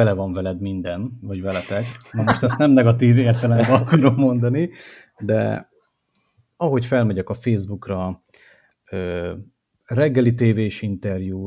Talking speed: 115 wpm